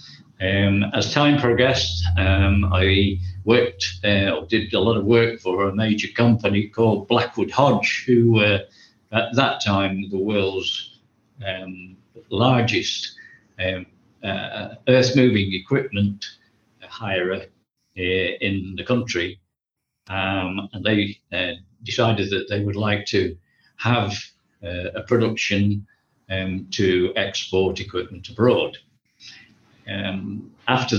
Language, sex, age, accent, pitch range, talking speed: English, male, 50-69, British, 95-115 Hz, 115 wpm